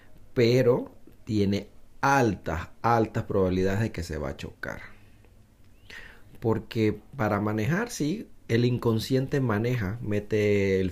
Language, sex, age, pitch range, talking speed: Spanish, male, 30-49, 95-120 Hz, 110 wpm